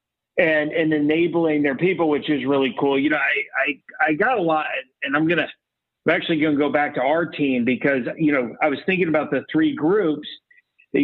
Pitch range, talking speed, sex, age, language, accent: 150-185 Hz, 210 wpm, male, 40-59, English, American